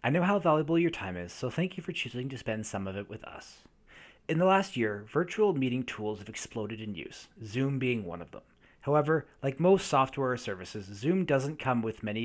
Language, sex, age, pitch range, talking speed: English, male, 30-49, 110-145 Hz, 225 wpm